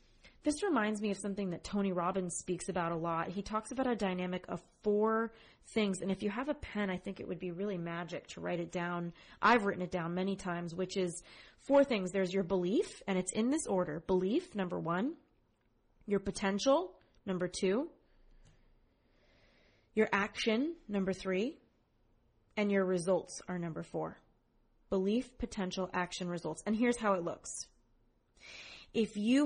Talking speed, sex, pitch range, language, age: 170 wpm, female, 185-220 Hz, English, 20-39